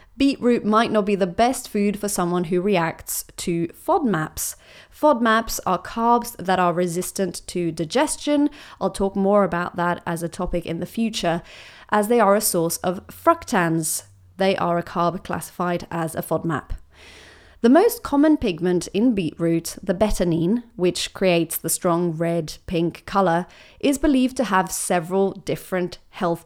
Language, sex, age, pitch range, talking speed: English, female, 30-49, 175-250 Hz, 155 wpm